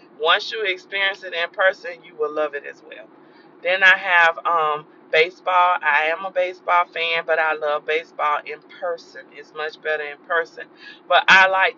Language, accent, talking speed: English, American, 185 wpm